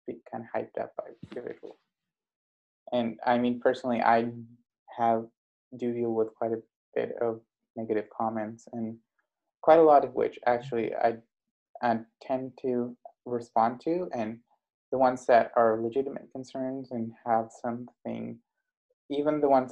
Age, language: 20-39, English